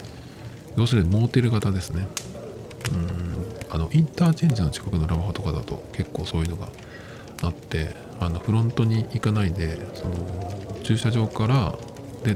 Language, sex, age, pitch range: Japanese, male, 50-69, 95-120 Hz